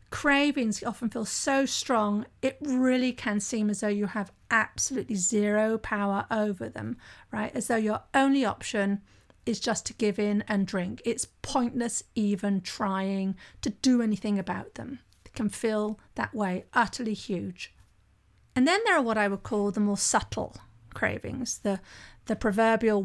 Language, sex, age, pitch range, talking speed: English, female, 40-59, 200-245 Hz, 160 wpm